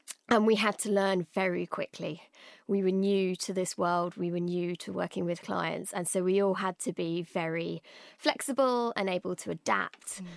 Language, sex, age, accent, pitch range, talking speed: English, female, 20-39, British, 185-215 Hz, 190 wpm